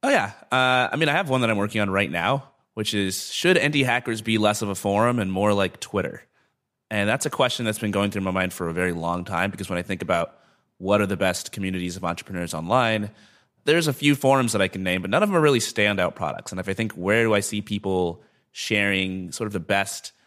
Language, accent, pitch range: English, American, 90-110 Hz